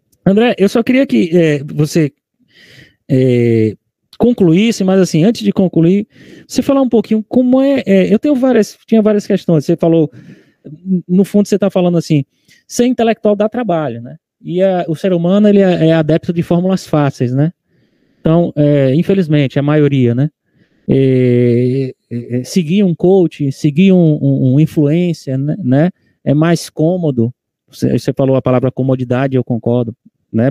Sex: male